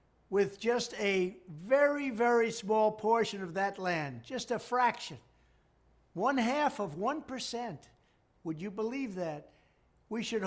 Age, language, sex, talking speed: 60-79, English, male, 130 wpm